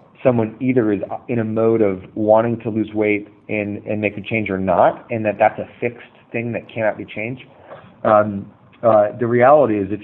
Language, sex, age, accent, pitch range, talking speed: English, male, 30-49, American, 105-120 Hz, 205 wpm